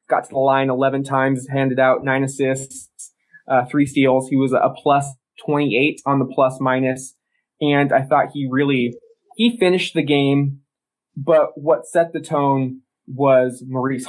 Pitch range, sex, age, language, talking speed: 130-150 Hz, male, 20-39, English, 160 wpm